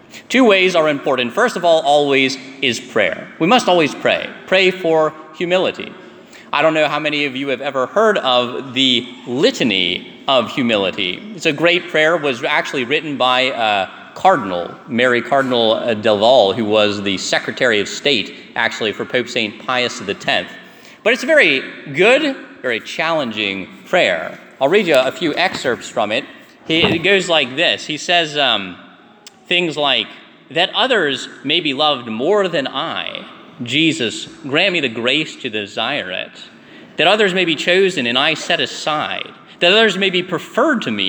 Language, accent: English, American